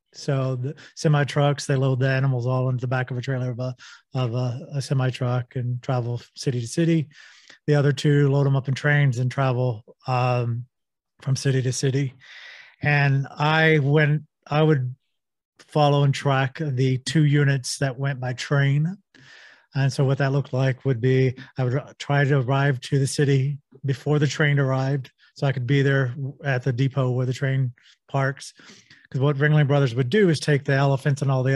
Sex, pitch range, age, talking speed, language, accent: male, 130-145 Hz, 40-59, 190 wpm, English, American